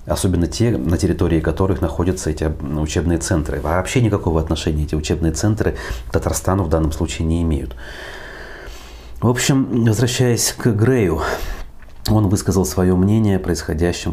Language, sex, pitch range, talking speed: Russian, male, 75-95 Hz, 140 wpm